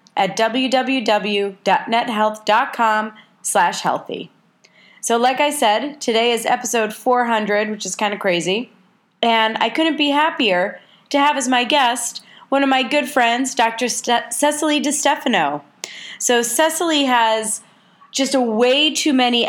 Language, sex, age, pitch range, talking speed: English, female, 30-49, 205-255 Hz, 130 wpm